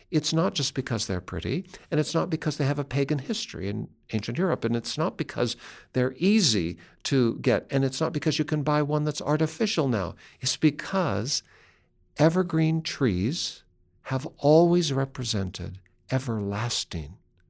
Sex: male